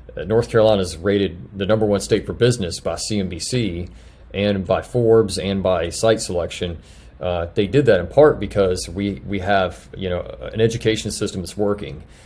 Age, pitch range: 40-59, 90-105 Hz